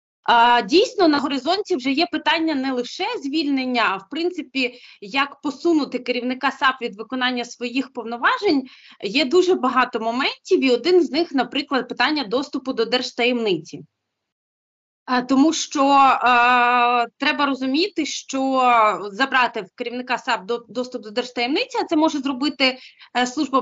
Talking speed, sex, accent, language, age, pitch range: 130 wpm, female, native, Ukrainian, 20-39, 235-295 Hz